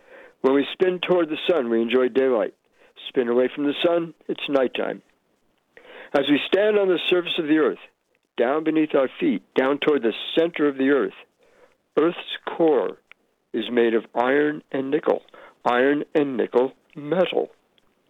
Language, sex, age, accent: English, male, 60-79, American